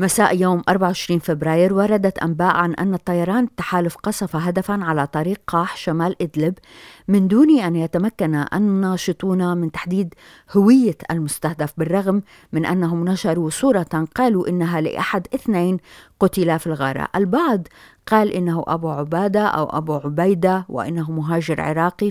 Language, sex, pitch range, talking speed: Arabic, female, 160-200 Hz, 135 wpm